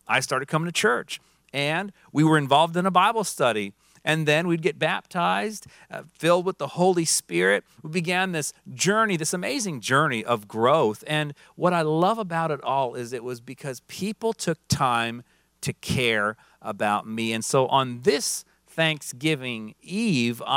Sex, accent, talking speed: male, American, 165 wpm